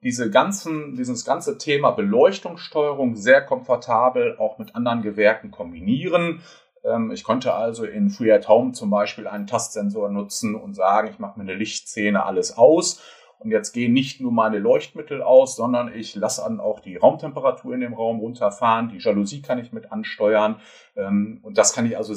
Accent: German